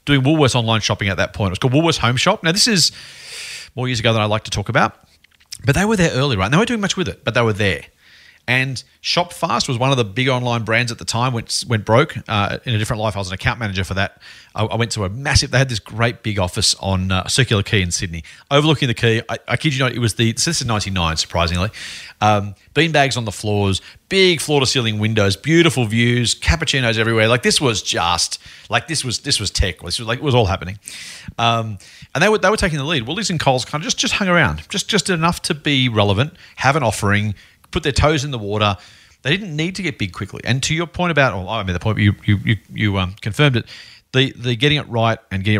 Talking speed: 260 wpm